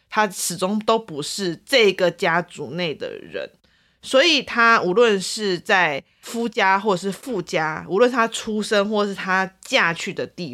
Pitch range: 180-240 Hz